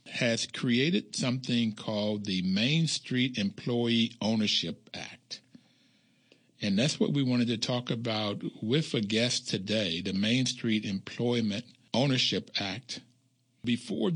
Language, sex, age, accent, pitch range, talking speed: English, male, 60-79, American, 105-125 Hz, 125 wpm